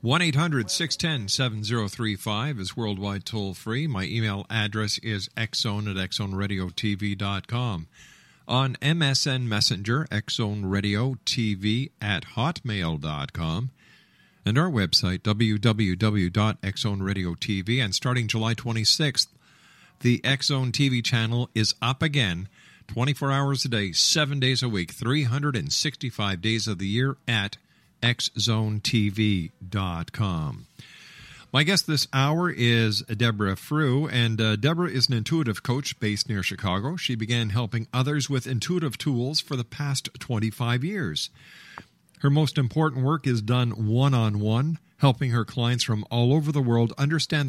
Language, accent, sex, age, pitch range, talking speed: English, American, male, 50-69, 105-140 Hz, 135 wpm